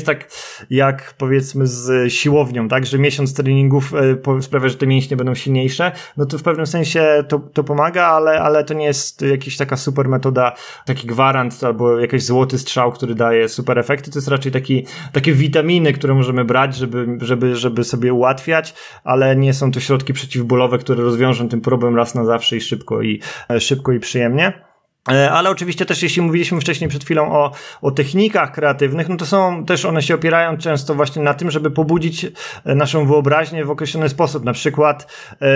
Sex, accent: male, native